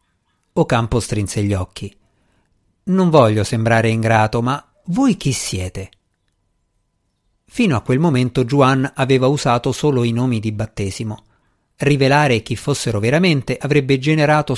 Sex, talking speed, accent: male, 125 wpm, native